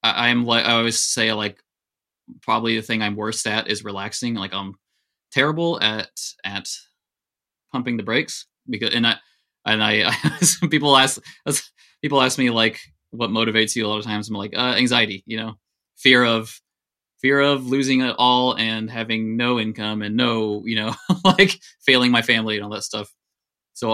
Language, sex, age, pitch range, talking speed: English, male, 20-39, 105-125 Hz, 180 wpm